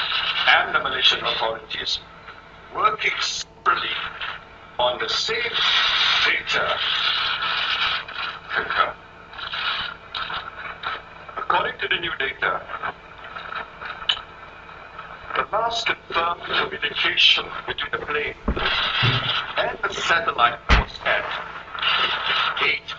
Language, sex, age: Chinese, male, 60-79